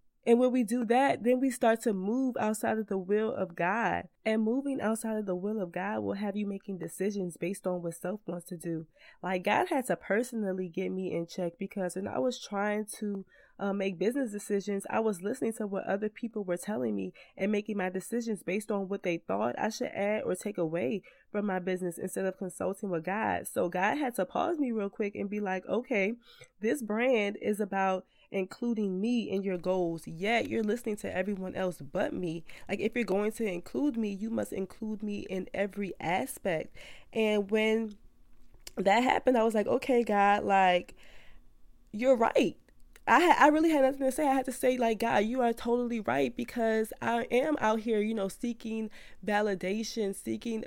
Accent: American